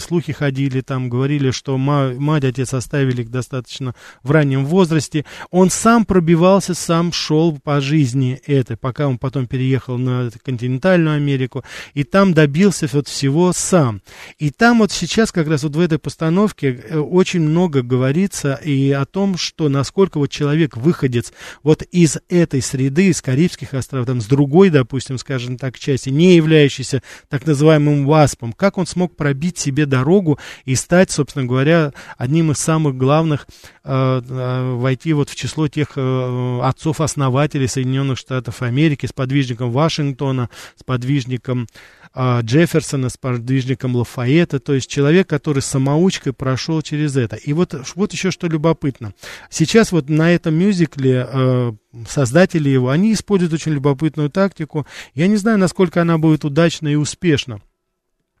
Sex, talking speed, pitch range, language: male, 150 wpm, 130-165 Hz, Russian